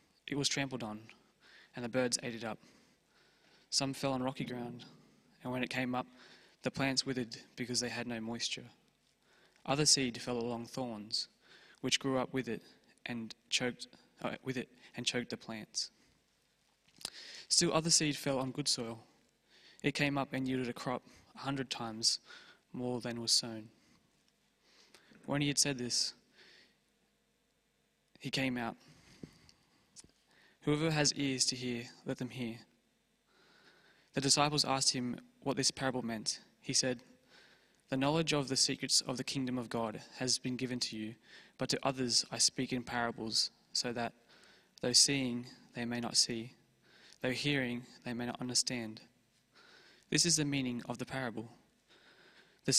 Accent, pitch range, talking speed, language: Australian, 120-135 Hz, 155 wpm, English